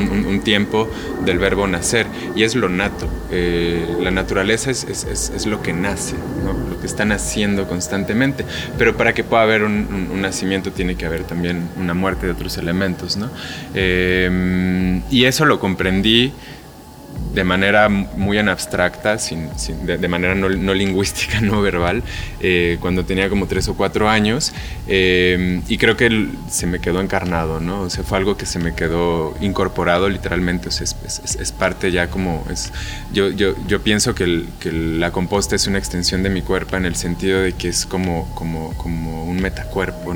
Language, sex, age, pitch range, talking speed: Spanish, male, 20-39, 85-100 Hz, 185 wpm